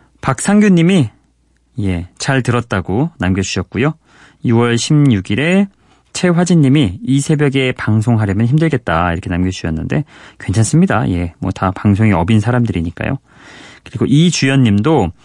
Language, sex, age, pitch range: Korean, male, 30-49, 95-150 Hz